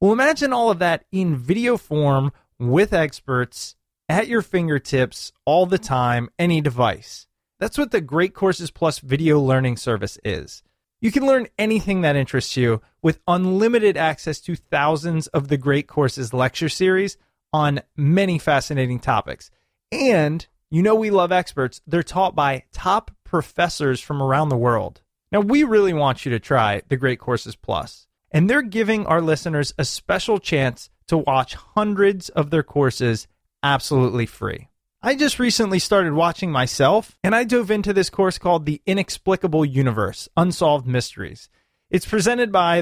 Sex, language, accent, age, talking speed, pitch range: male, English, American, 30-49, 160 wpm, 130-190 Hz